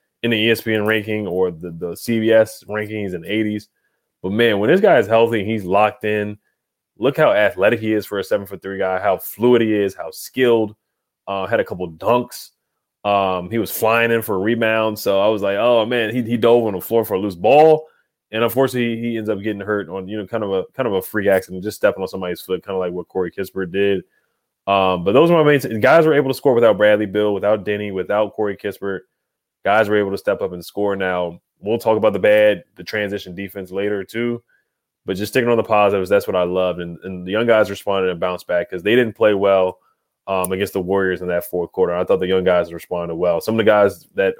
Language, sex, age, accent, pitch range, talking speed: English, male, 20-39, American, 95-115 Hz, 245 wpm